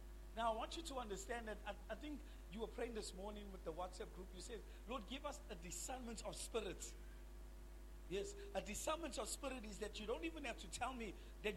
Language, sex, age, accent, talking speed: English, male, 50-69, South African, 225 wpm